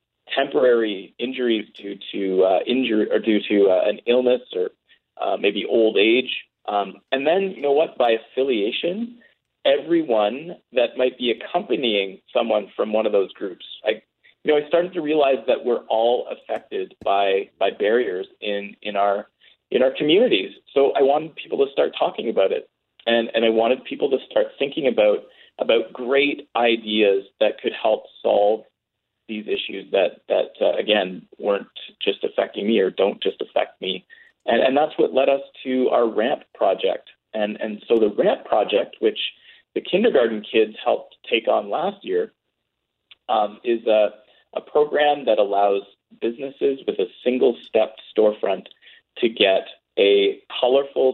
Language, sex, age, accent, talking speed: English, male, 30-49, American, 160 wpm